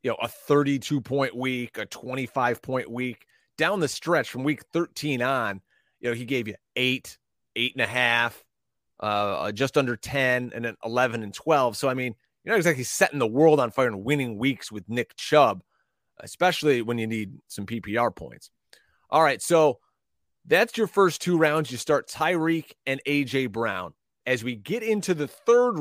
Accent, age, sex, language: American, 30-49, male, English